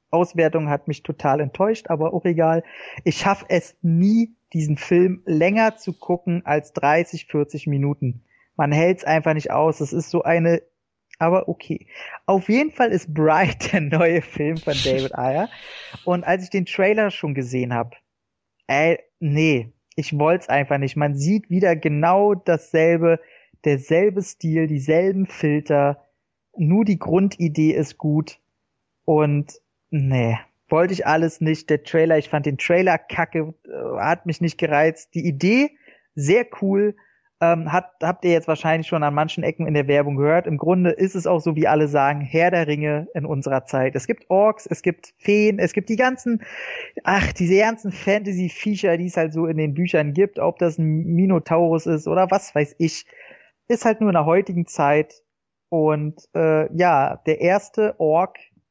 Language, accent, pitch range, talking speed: German, German, 150-180 Hz, 170 wpm